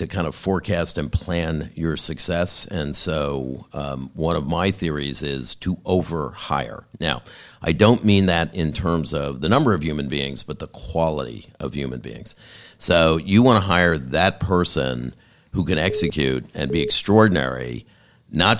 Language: English